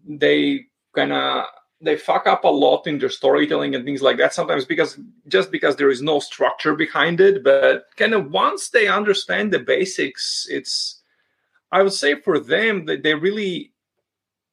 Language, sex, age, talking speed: English, male, 30-49, 175 wpm